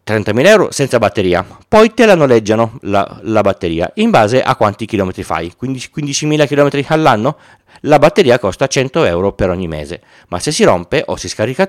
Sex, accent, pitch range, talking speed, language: male, native, 95-130 Hz, 180 wpm, Italian